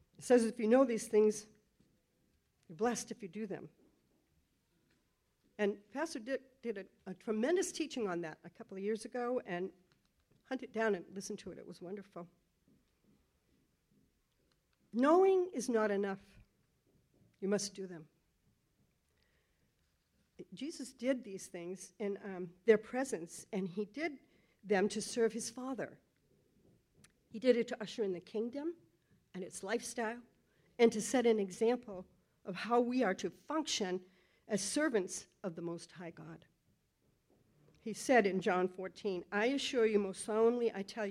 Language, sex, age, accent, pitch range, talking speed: English, female, 60-79, American, 190-240 Hz, 150 wpm